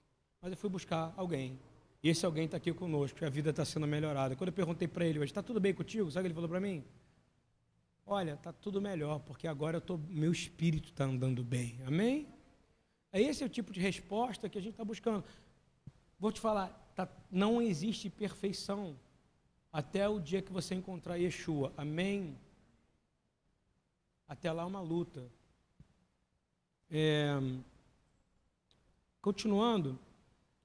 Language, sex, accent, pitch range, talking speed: Portuguese, male, Brazilian, 155-215 Hz, 160 wpm